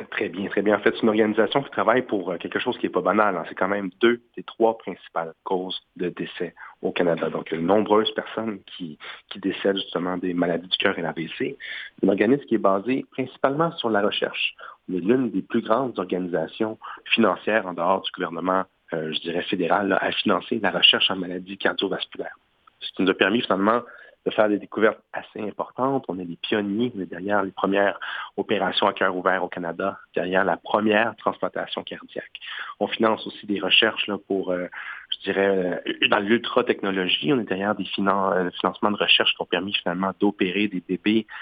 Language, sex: French, male